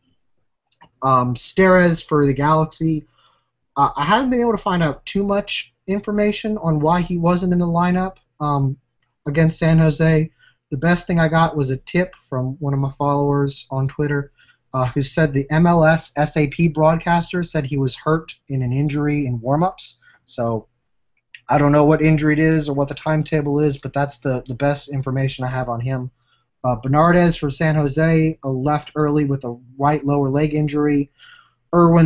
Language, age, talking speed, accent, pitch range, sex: English, 20-39, 180 wpm, American, 130-160 Hz, male